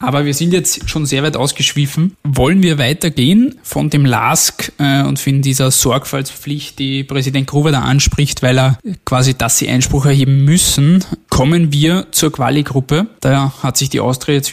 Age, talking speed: 20-39, 175 wpm